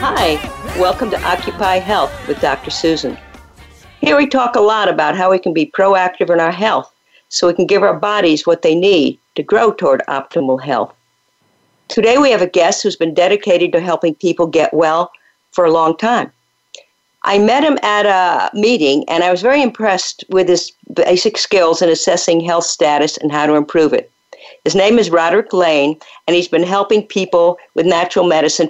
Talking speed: 190 wpm